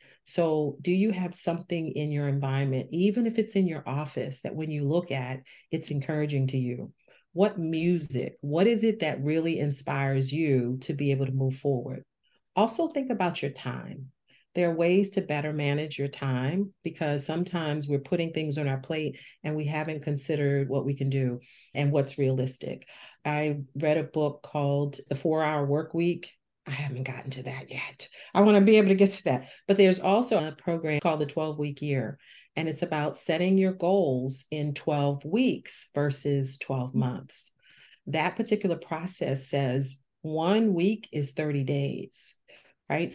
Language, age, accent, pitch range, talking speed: English, 40-59, American, 140-175 Hz, 170 wpm